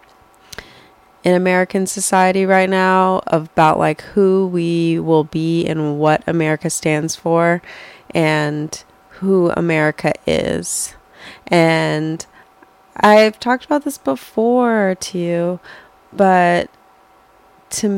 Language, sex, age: English, female, 20-39